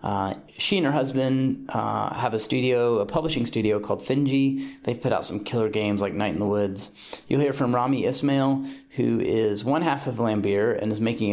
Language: English